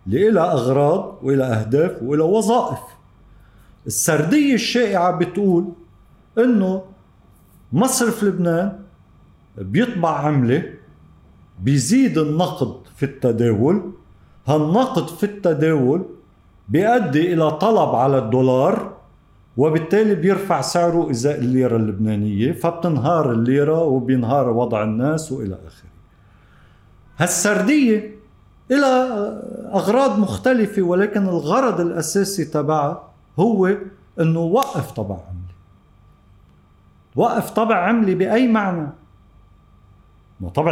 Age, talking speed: 50-69, 85 wpm